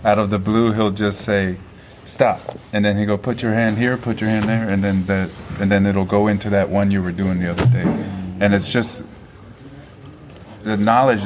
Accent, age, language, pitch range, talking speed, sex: American, 30-49, English, 90-105 Hz, 220 wpm, male